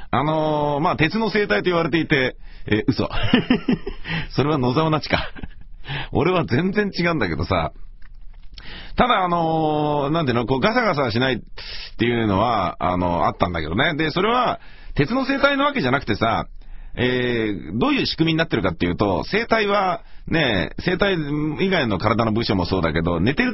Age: 40-59